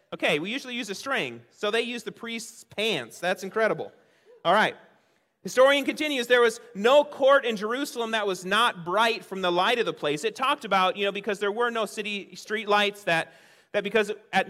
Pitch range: 165-210 Hz